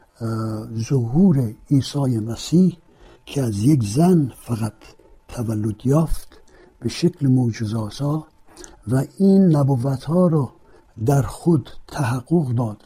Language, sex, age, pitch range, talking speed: Persian, male, 60-79, 120-160 Hz, 100 wpm